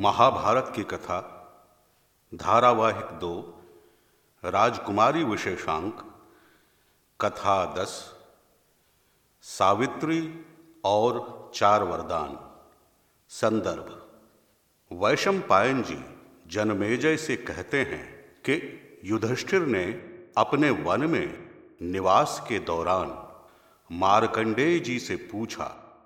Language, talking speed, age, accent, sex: Hindi, 80 wpm, 50-69, native, male